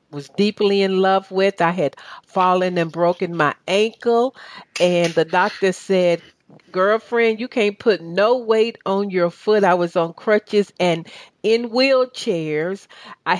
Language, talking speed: English, 150 wpm